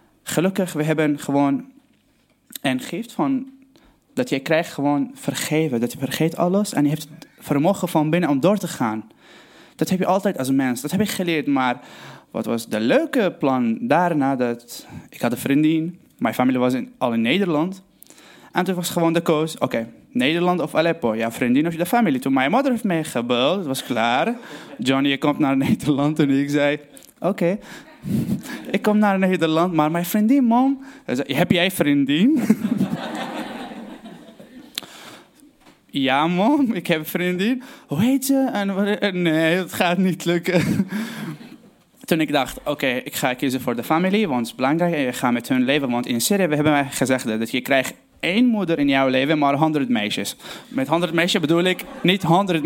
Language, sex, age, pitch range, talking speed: Dutch, male, 20-39, 145-215 Hz, 180 wpm